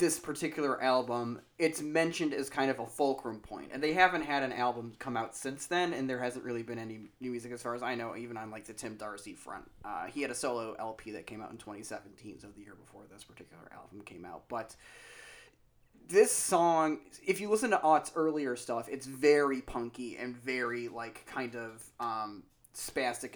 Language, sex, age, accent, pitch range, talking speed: English, male, 30-49, American, 115-145 Hz, 210 wpm